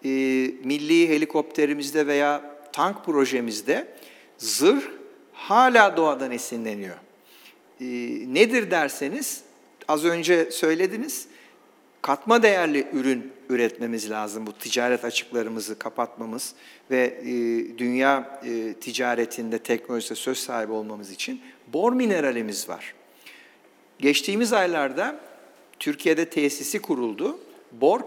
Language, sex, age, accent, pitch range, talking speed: Turkish, male, 50-69, native, 130-200 Hz, 85 wpm